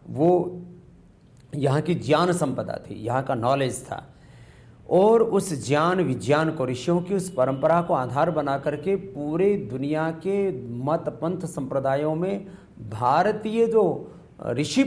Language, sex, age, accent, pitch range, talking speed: English, male, 40-59, Indian, 140-195 Hz, 130 wpm